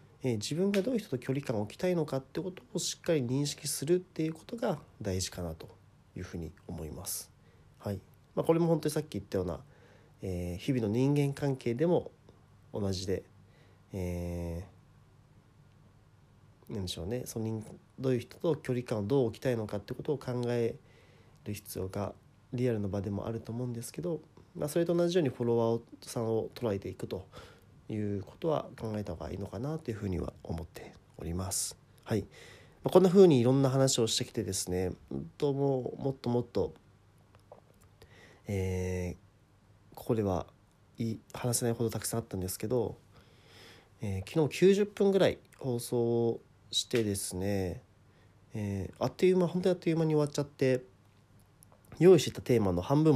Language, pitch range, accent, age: Japanese, 100-135 Hz, native, 40-59